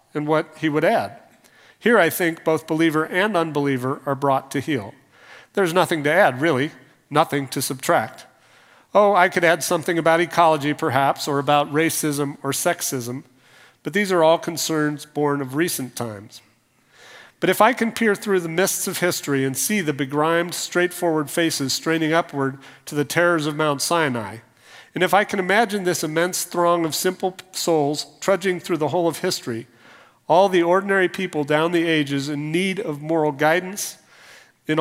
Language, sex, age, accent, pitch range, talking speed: English, male, 40-59, American, 140-180 Hz, 170 wpm